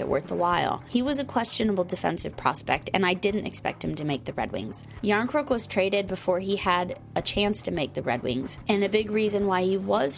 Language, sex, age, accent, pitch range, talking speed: English, female, 20-39, American, 180-215 Hz, 230 wpm